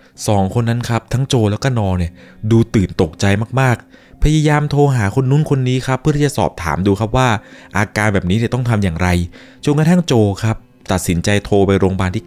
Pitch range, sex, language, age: 85-115 Hz, male, Thai, 20-39